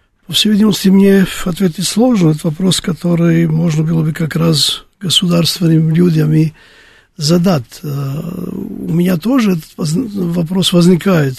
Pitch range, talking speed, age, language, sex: 160-190 Hz, 120 wpm, 50-69, Russian, male